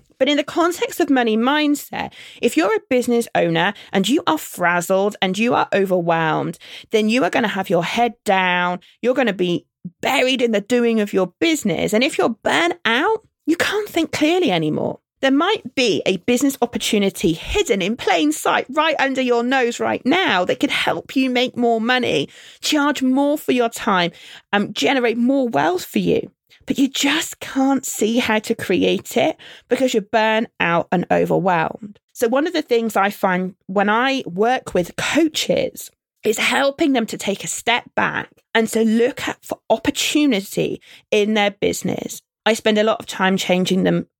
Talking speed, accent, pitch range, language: 185 wpm, British, 195-270 Hz, English